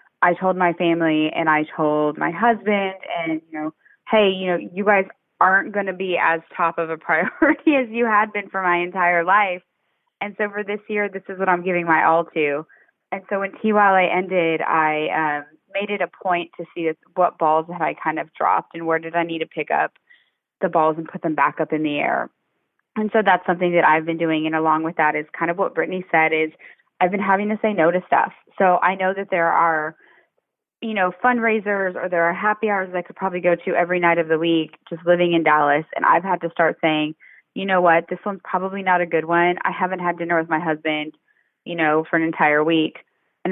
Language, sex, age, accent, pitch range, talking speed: English, female, 20-39, American, 155-190 Hz, 235 wpm